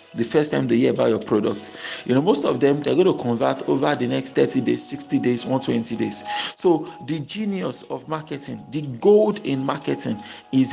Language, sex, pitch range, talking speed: English, male, 145-200 Hz, 200 wpm